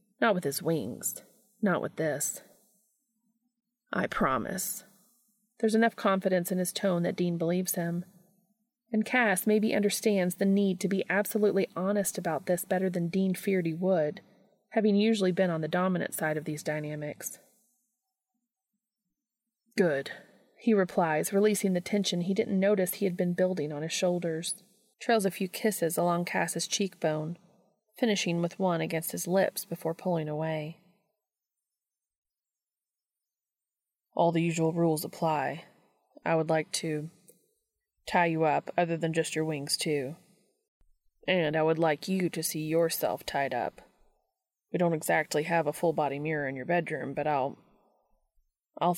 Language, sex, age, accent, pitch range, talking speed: English, female, 30-49, American, 165-210 Hz, 145 wpm